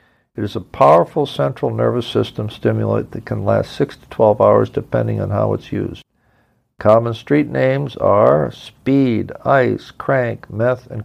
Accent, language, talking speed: American, English, 155 wpm